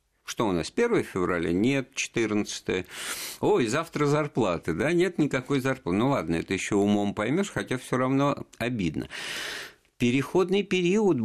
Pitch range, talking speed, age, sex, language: 85-125 Hz, 140 wpm, 50-69, male, Russian